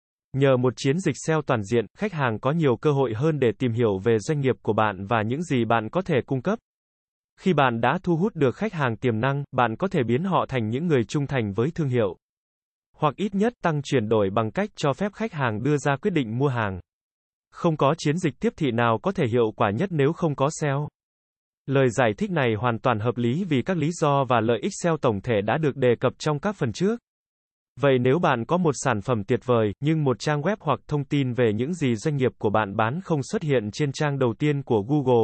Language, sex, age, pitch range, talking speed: Vietnamese, male, 20-39, 120-155 Hz, 250 wpm